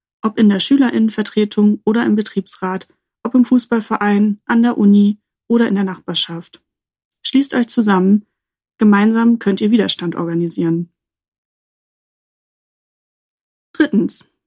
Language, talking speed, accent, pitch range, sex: German, 110 wpm, German, 195-235 Hz, female